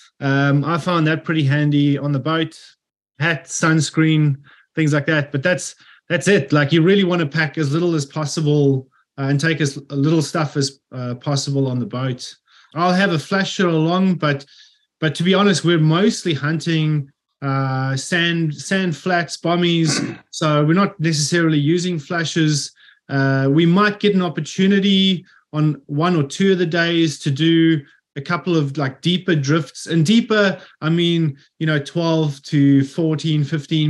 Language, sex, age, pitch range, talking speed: English, male, 20-39, 140-170 Hz, 170 wpm